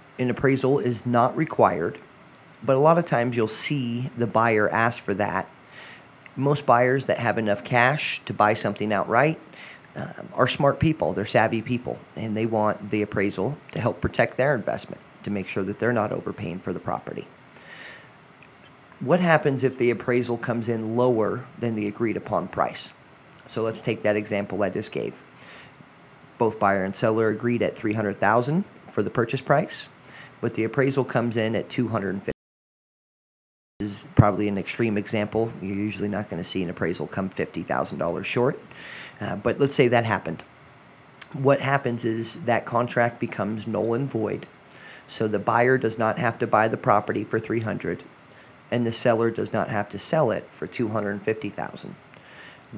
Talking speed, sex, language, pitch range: 170 wpm, male, English, 105-125 Hz